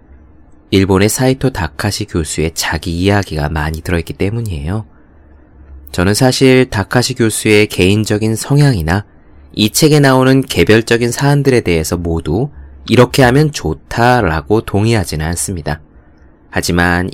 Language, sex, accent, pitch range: Korean, male, native, 80-115 Hz